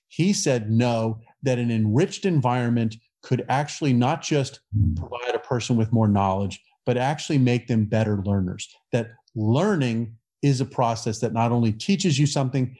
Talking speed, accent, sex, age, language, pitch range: 160 wpm, American, male, 40-59, English, 110-130 Hz